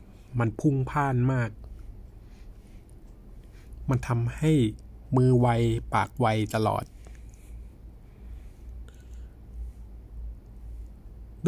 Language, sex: Thai, male